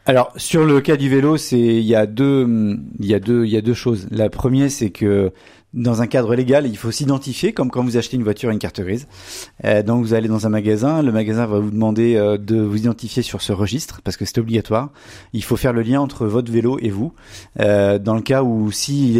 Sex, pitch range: male, 105-130 Hz